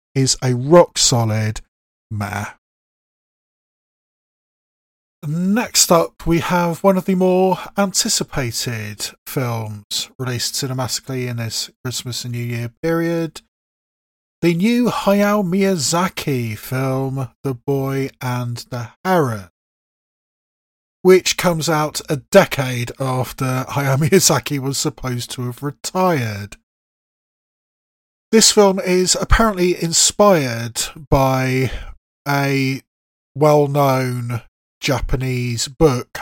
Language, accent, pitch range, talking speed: English, British, 120-165 Hz, 95 wpm